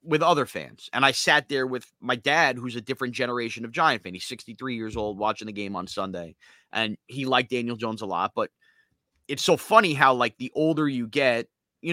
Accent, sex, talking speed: American, male, 220 wpm